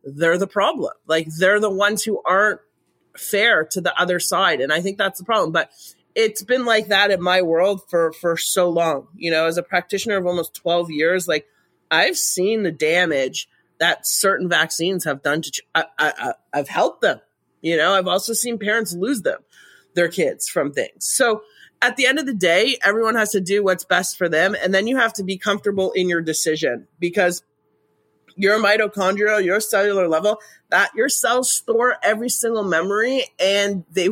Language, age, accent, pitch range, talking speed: English, 30-49, American, 175-220 Hz, 190 wpm